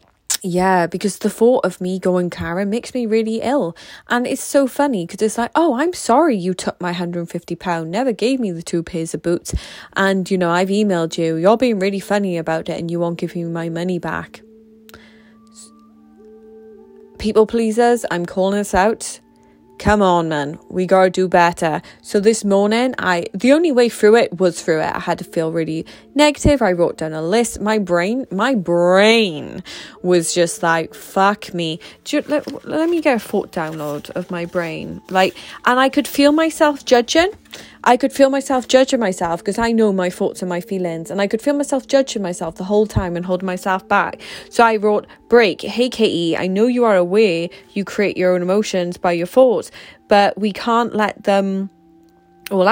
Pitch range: 175-230 Hz